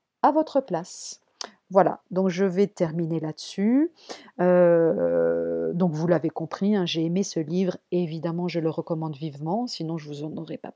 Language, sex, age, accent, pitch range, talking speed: French, female, 40-59, French, 165-230 Hz, 175 wpm